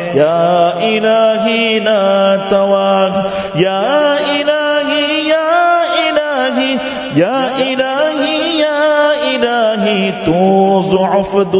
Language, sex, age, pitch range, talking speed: English, male, 30-49, 195-225 Hz, 65 wpm